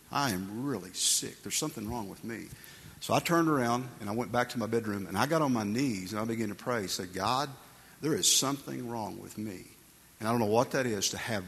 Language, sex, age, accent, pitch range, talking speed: English, male, 50-69, American, 105-130 Hz, 255 wpm